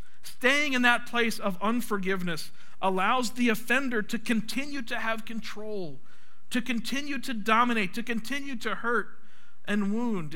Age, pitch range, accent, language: 50-69, 200-235 Hz, American, English